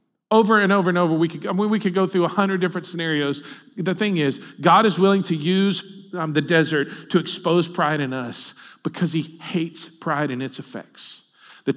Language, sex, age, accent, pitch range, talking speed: English, male, 50-69, American, 135-180 Hz, 210 wpm